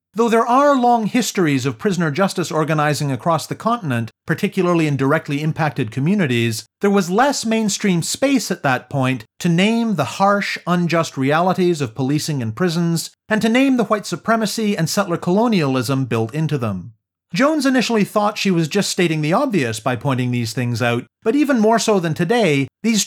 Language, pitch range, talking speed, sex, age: English, 135-205 Hz, 175 wpm, male, 40-59